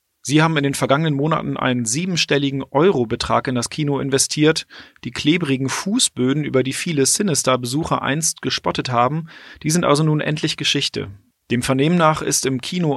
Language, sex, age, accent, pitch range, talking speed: German, male, 30-49, German, 125-155 Hz, 165 wpm